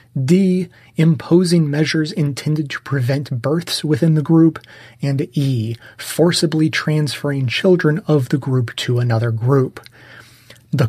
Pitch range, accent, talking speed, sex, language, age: 120-155 Hz, American, 120 wpm, male, English, 30-49